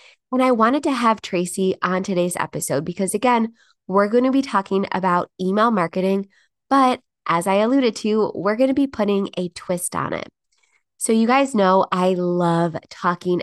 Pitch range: 180-225 Hz